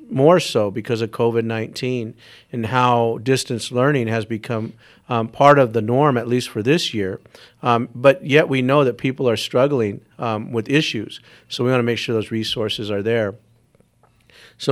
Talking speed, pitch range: 175 wpm, 115-135 Hz